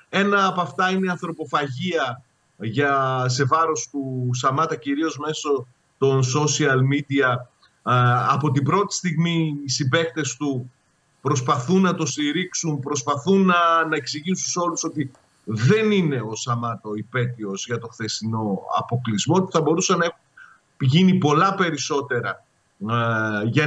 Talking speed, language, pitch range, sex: 130 wpm, Greek, 135-190 Hz, male